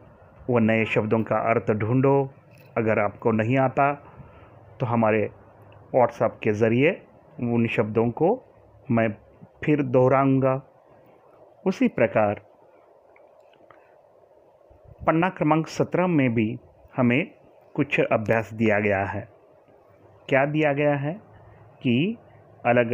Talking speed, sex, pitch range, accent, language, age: 105 wpm, male, 110-140 Hz, native, Marathi, 30-49